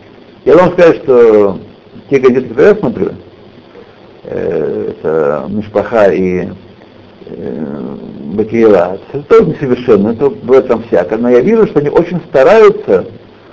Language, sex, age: Russian, male, 60-79